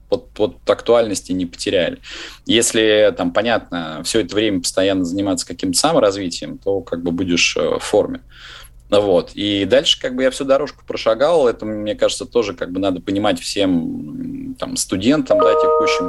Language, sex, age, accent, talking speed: Russian, male, 20-39, native, 165 wpm